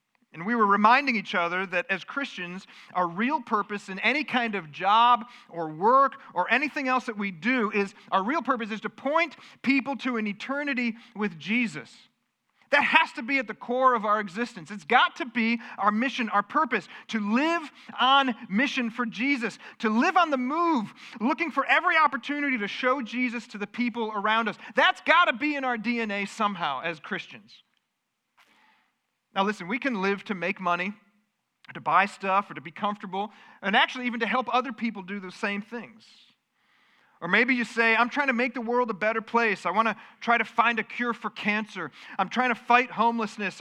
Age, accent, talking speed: 40-59, American, 195 wpm